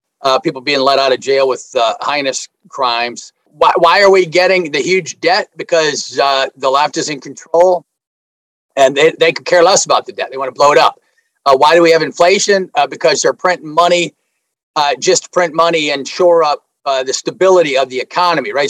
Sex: male